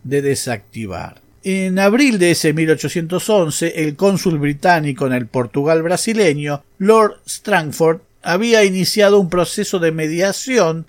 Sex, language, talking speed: male, Spanish, 120 wpm